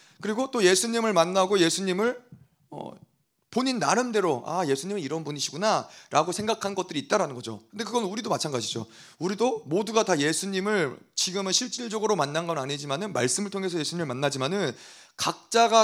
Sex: male